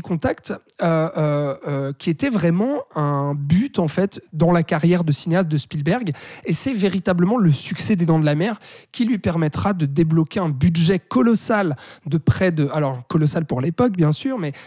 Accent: French